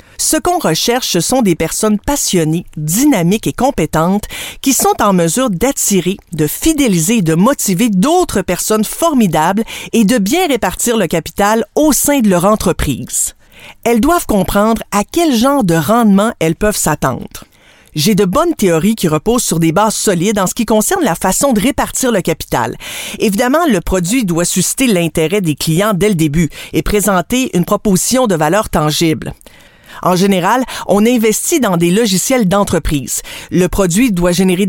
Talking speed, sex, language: 165 wpm, female, French